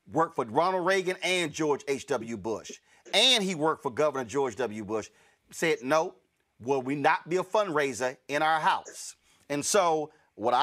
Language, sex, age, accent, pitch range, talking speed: English, male, 40-59, American, 155-210 Hz, 170 wpm